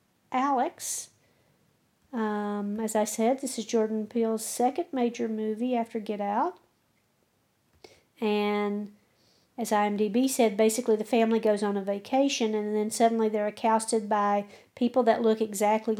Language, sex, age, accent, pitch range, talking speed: English, female, 50-69, American, 215-255 Hz, 135 wpm